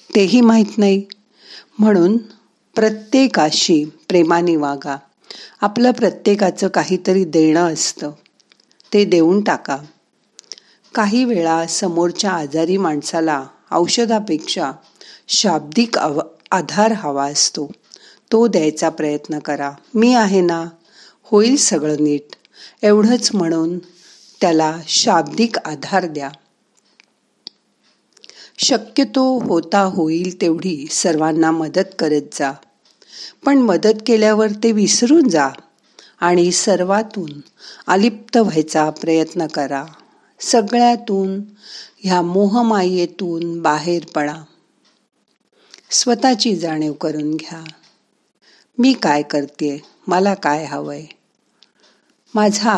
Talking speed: 90 wpm